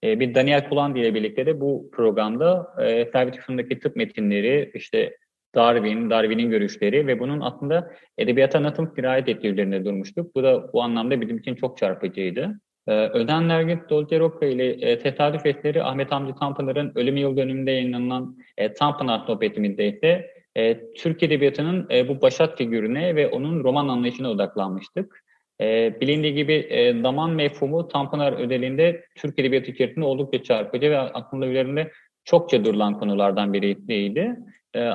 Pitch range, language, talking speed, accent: 125-160 Hz, Turkish, 145 wpm, native